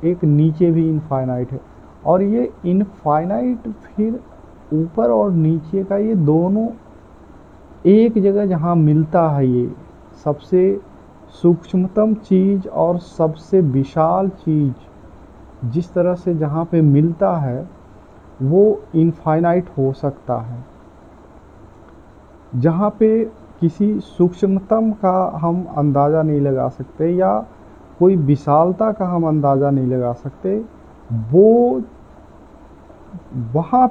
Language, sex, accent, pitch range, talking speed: Hindi, male, native, 140-190 Hz, 110 wpm